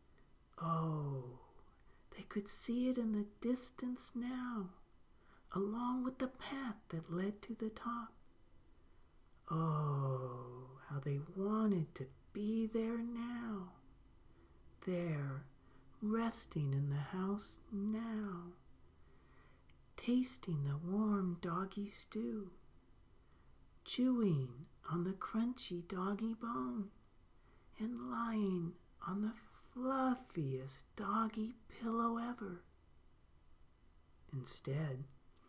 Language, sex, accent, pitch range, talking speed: English, male, American, 130-215 Hz, 90 wpm